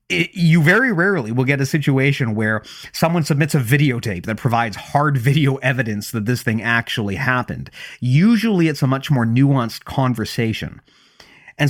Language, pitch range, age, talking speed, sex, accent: English, 110-150 Hz, 30-49, 160 wpm, male, American